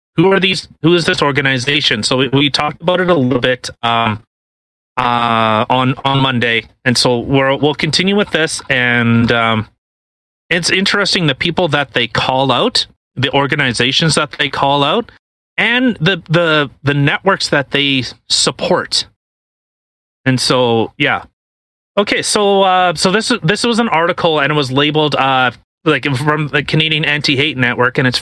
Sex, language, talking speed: male, English, 160 wpm